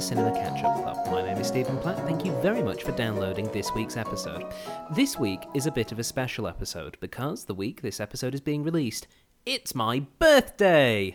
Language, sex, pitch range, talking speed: English, male, 100-140 Hz, 200 wpm